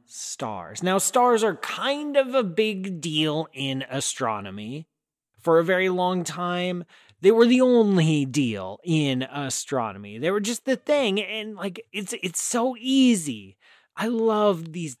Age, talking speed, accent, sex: 20-39, 150 wpm, American, male